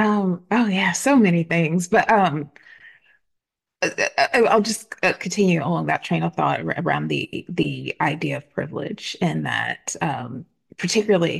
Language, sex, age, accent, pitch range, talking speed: English, female, 30-49, American, 155-205 Hz, 135 wpm